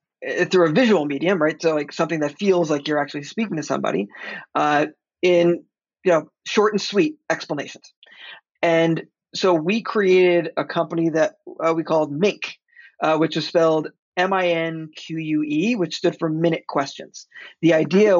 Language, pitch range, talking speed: English, 160-190 Hz, 150 wpm